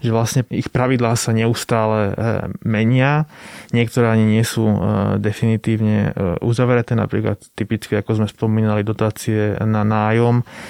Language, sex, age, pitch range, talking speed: Slovak, male, 20-39, 100-115 Hz, 120 wpm